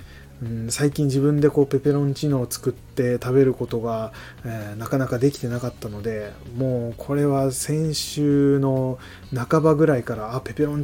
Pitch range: 110-145 Hz